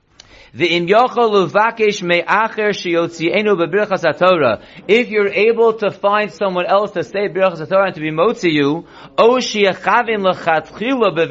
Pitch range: 170-210 Hz